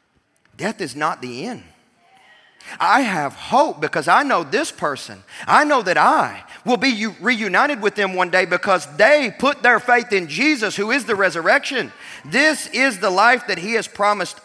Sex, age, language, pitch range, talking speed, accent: male, 40-59, English, 125-185 Hz, 180 wpm, American